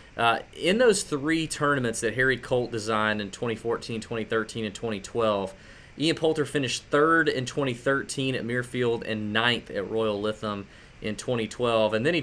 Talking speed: 155 wpm